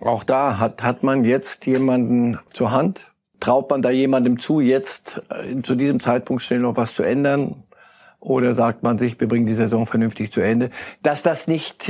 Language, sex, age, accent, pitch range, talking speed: German, male, 60-79, German, 110-130 Hz, 185 wpm